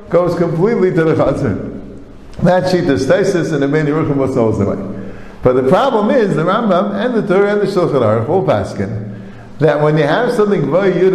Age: 50-69